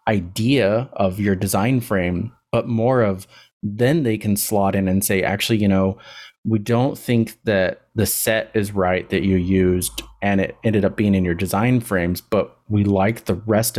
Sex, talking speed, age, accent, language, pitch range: male, 185 wpm, 30-49, American, English, 95-115 Hz